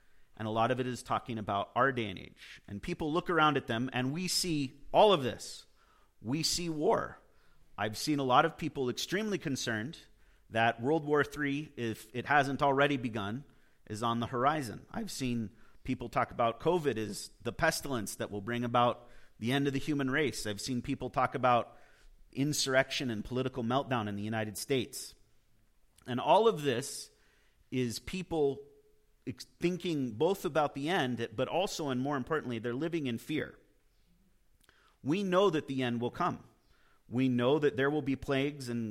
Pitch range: 115-150 Hz